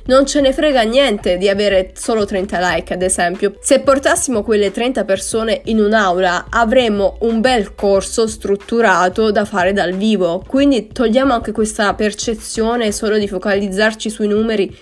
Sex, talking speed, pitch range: female, 155 wpm, 195-235 Hz